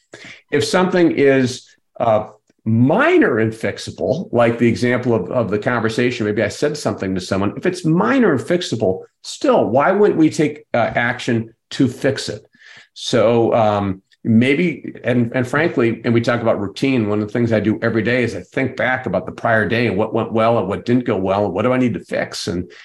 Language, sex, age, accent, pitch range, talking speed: English, male, 50-69, American, 110-135 Hz, 205 wpm